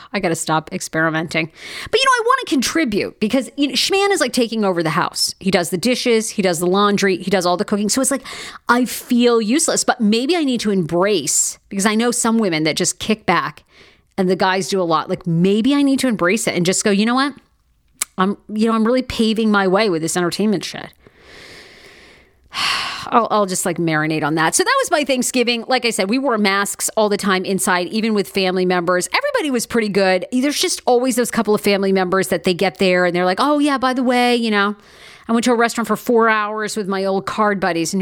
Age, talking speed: 40-59, 240 wpm